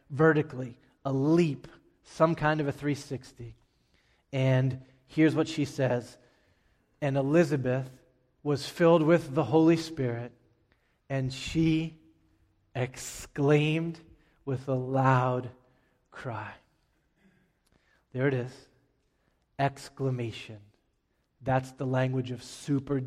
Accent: American